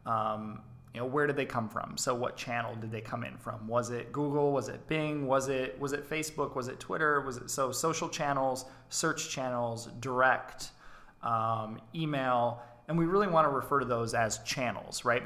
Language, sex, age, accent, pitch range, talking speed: English, male, 20-39, American, 115-145 Hz, 200 wpm